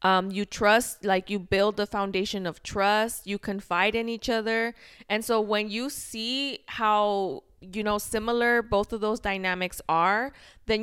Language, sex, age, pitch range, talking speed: English, female, 20-39, 185-220 Hz, 165 wpm